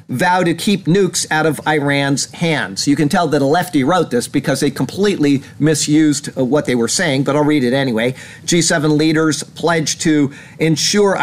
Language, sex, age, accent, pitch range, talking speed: English, male, 50-69, American, 135-165 Hz, 180 wpm